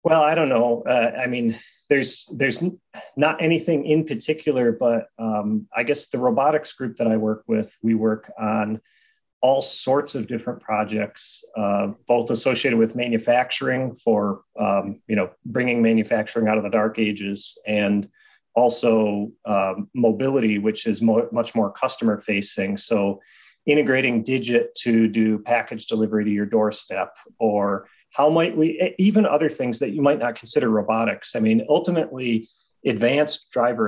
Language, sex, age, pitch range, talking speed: English, male, 30-49, 105-130 Hz, 150 wpm